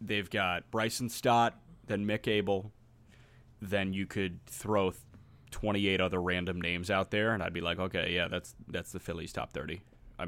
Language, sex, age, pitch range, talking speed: English, male, 30-49, 95-115 Hz, 175 wpm